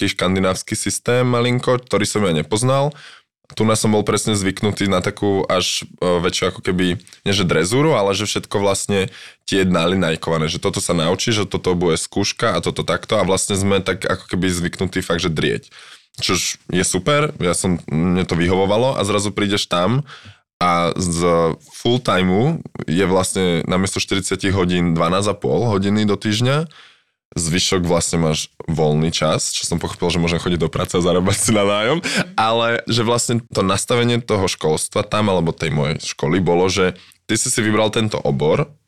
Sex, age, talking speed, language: male, 20-39, 170 wpm, Slovak